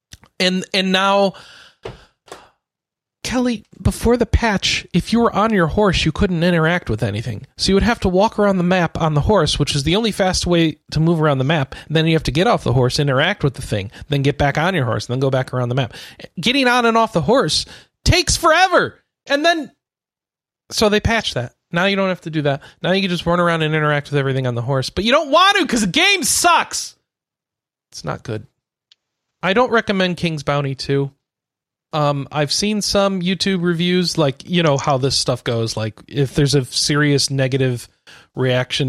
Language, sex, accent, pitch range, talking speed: English, male, American, 135-205 Hz, 215 wpm